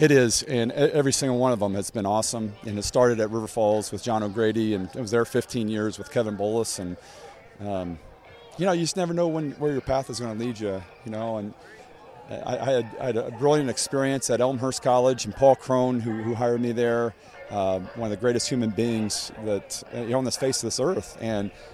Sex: male